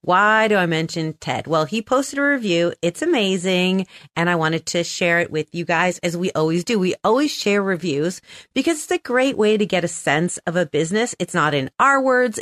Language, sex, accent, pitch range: English, female, American, 170-235 Hz